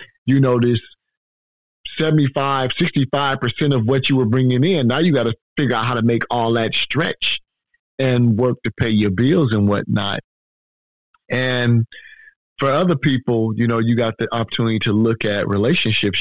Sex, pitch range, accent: male, 100-125 Hz, American